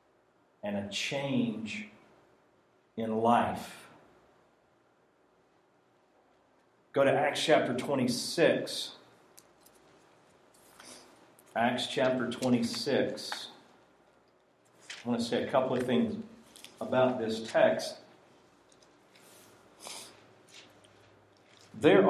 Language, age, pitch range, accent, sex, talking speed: English, 40-59, 110-135 Hz, American, male, 70 wpm